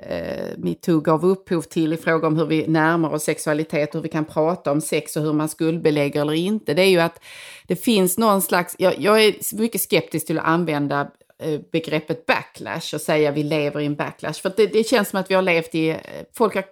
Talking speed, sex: 225 wpm, female